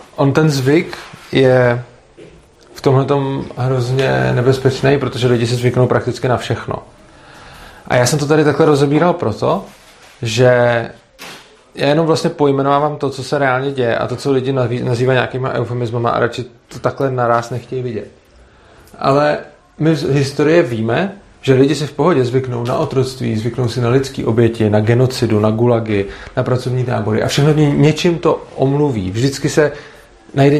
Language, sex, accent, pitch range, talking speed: Czech, male, native, 120-140 Hz, 160 wpm